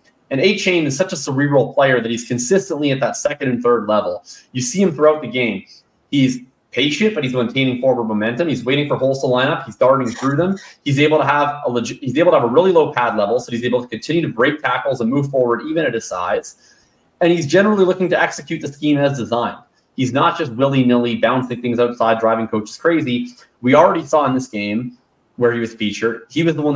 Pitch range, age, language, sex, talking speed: 115-145 Hz, 20-39, English, male, 235 wpm